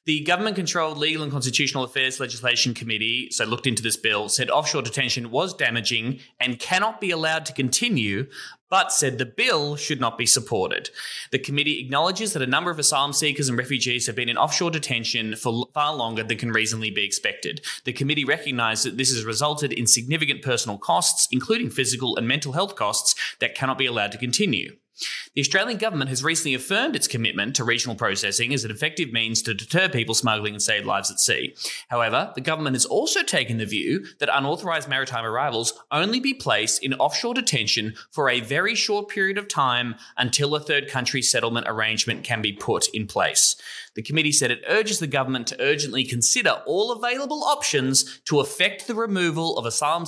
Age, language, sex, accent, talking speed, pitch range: 20-39, English, male, Australian, 190 wpm, 120-155 Hz